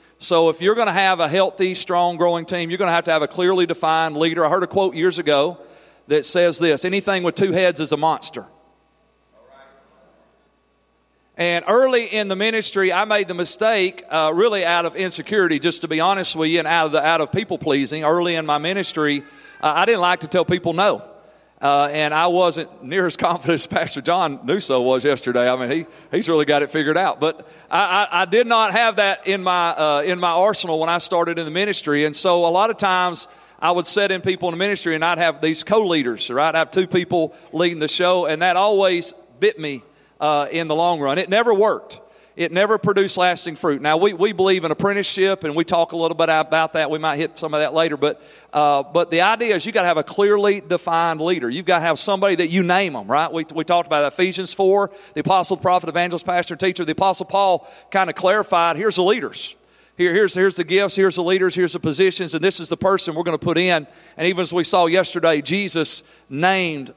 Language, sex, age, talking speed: English, male, 40-59, 230 wpm